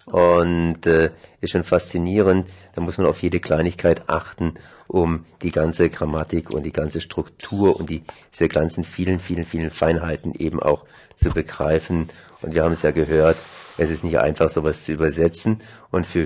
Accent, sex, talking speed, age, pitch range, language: German, male, 175 wpm, 50-69, 80-95 Hz, German